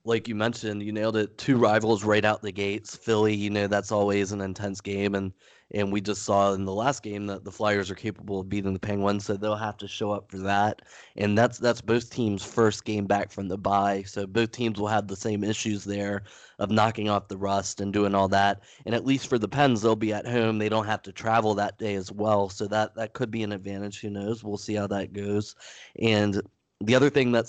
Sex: male